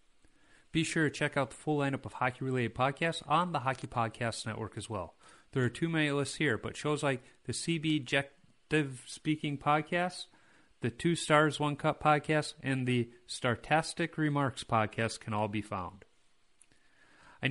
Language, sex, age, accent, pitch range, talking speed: English, male, 30-49, American, 110-150 Hz, 160 wpm